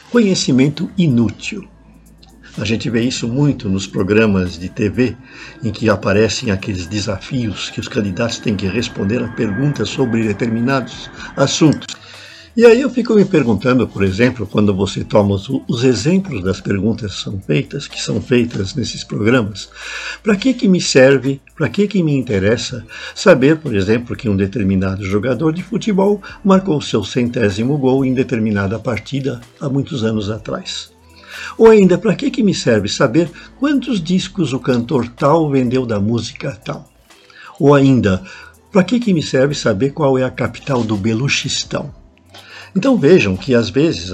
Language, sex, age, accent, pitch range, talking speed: Portuguese, male, 60-79, Brazilian, 105-150 Hz, 155 wpm